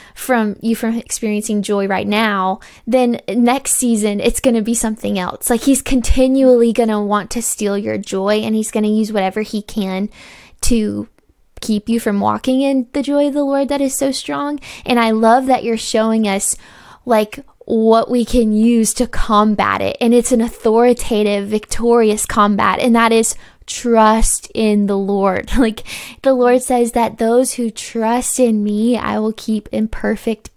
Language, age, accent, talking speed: English, 10-29, American, 180 wpm